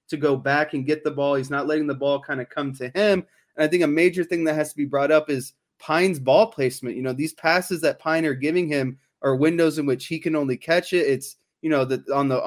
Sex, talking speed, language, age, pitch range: male, 275 wpm, English, 20-39, 135-160 Hz